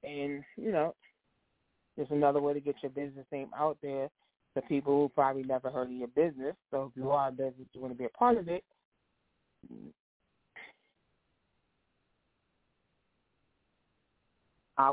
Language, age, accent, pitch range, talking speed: English, 20-39, American, 135-165 Hz, 150 wpm